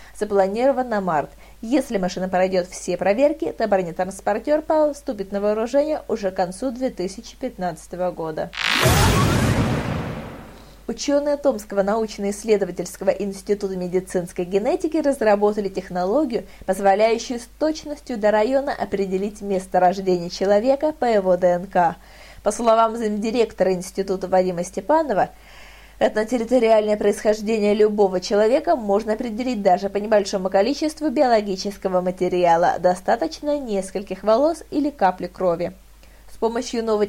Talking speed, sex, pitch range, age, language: 105 wpm, female, 190-275 Hz, 20-39, Russian